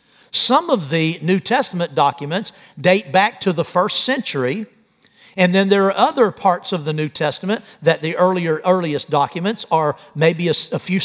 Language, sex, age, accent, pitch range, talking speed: English, male, 60-79, American, 160-215 Hz, 175 wpm